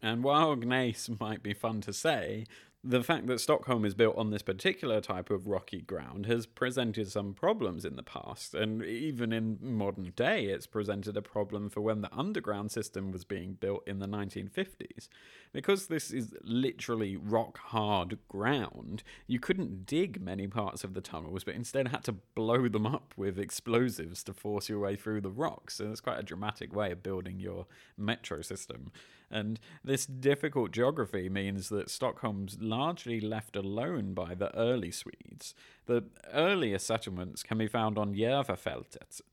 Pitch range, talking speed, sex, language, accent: 100-120 Hz, 170 wpm, male, English, British